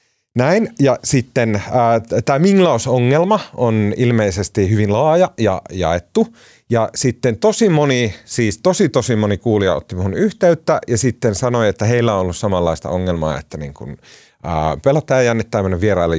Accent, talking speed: native, 150 wpm